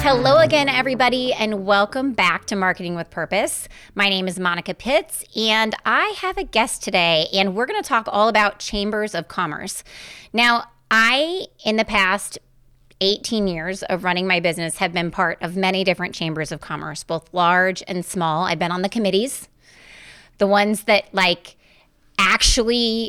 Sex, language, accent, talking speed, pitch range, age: female, English, American, 170 wpm, 185-240 Hz, 30-49